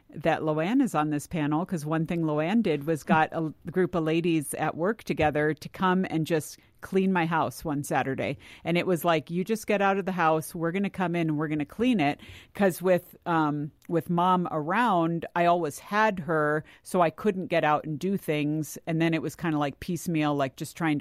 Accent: American